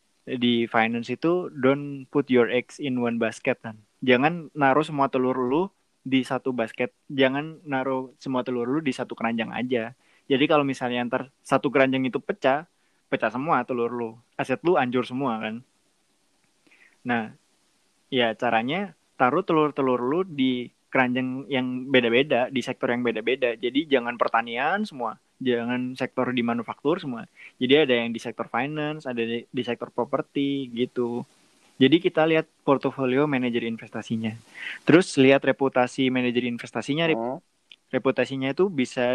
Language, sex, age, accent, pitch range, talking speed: Indonesian, male, 20-39, native, 120-140 Hz, 145 wpm